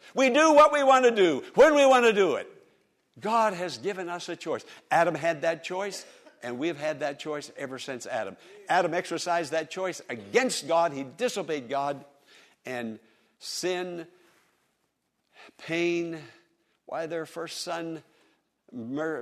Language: English